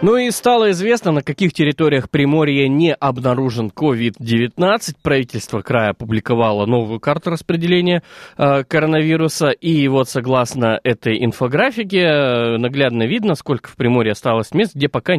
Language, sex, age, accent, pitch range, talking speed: Russian, male, 20-39, native, 115-155 Hz, 125 wpm